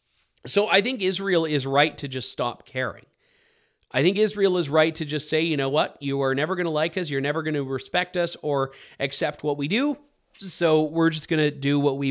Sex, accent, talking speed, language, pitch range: male, American, 235 wpm, English, 140-180 Hz